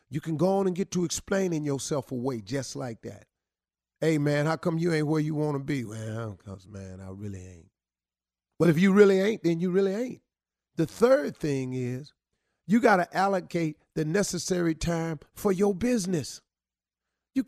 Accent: American